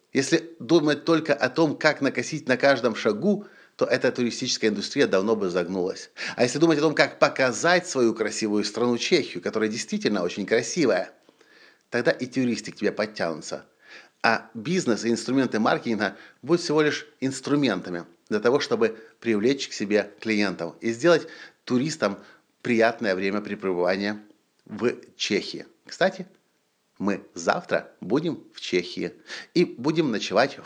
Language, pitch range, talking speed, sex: Russian, 110-165 Hz, 140 wpm, male